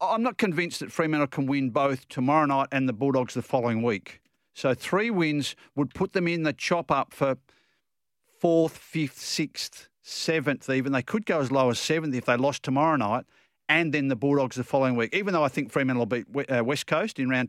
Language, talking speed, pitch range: English, 210 wpm, 130-165 Hz